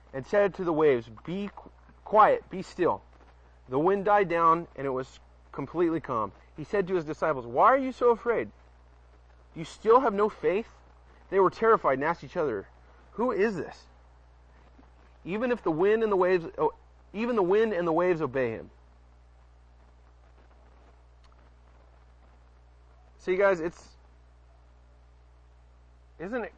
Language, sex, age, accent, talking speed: English, male, 30-49, American, 145 wpm